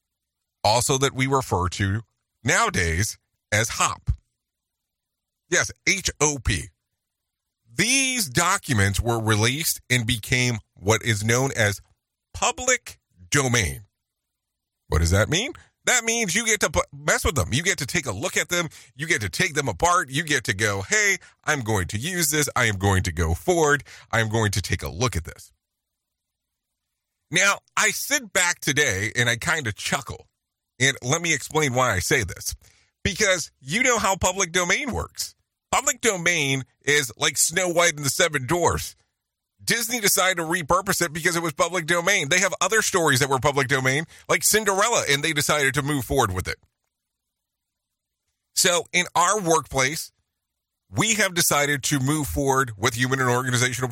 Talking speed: 165 wpm